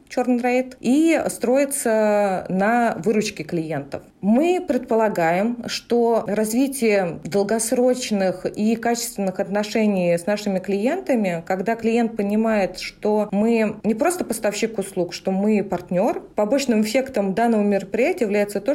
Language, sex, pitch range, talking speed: Russian, female, 190-230 Hz, 110 wpm